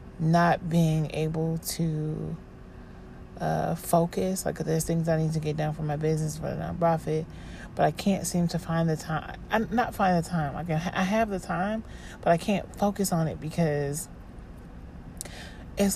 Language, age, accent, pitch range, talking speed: English, 30-49, American, 155-195 Hz, 175 wpm